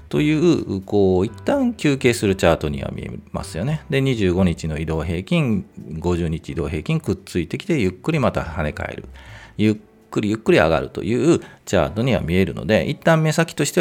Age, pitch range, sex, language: 40-59, 85-125 Hz, male, Japanese